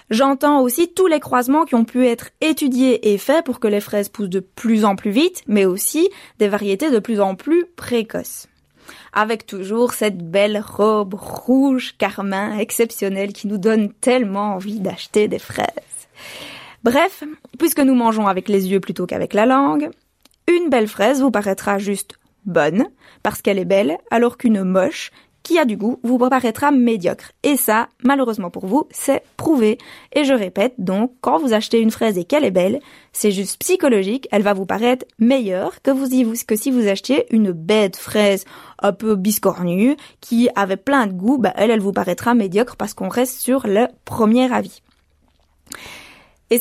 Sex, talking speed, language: female, 180 wpm, French